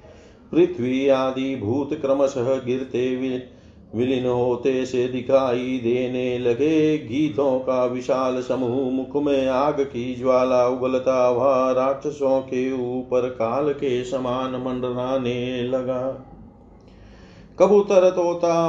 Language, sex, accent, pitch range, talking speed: Hindi, male, native, 125-140 Hz, 105 wpm